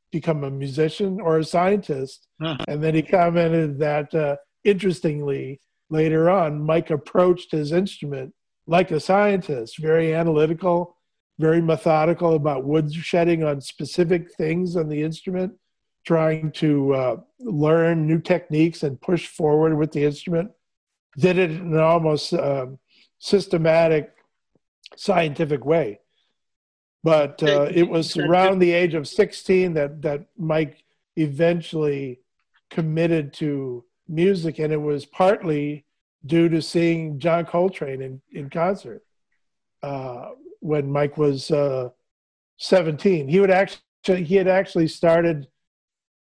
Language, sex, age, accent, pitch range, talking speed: English, male, 50-69, American, 145-170 Hz, 125 wpm